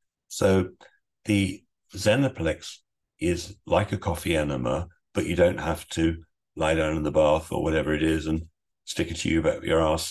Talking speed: 170 wpm